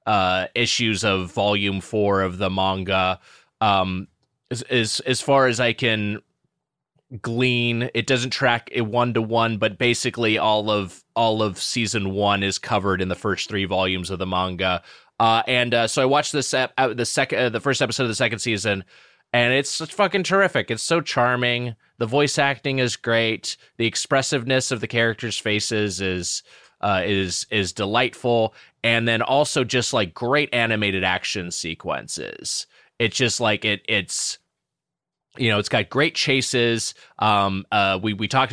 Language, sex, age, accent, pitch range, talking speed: English, male, 20-39, American, 100-120 Hz, 170 wpm